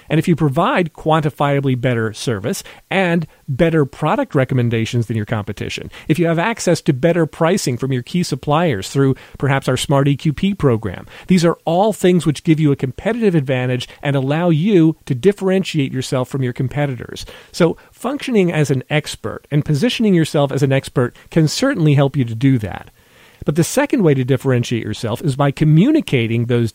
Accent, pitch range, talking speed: American, 125-175 Hz, 175 wpm